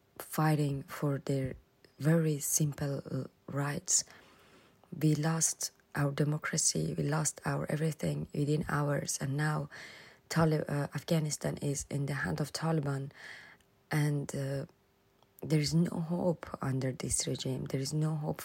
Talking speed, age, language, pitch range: 130 wpm, 20-39, English, 145-160 Hz